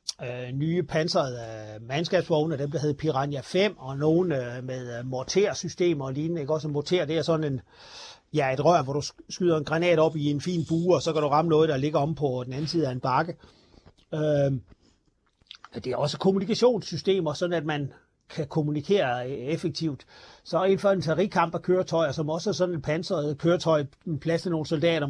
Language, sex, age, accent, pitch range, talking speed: Danish, male, 40-59, native, 145-180 Hz, 200 wpm